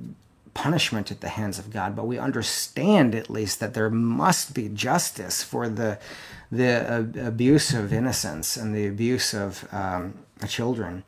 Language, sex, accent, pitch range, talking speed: English, male, American, 100-125 Hz, 155 wpm